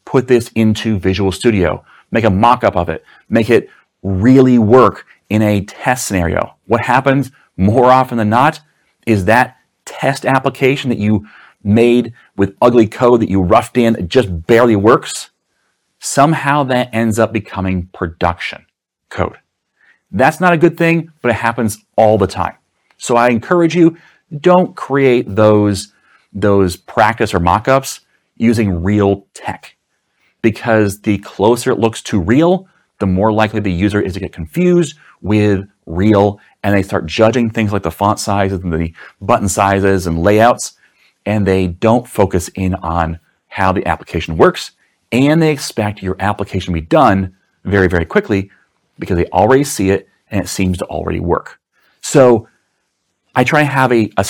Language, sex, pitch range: English, male, 95-125 Hz